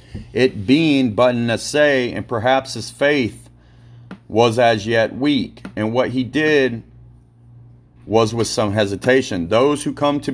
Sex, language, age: male, English, 40-59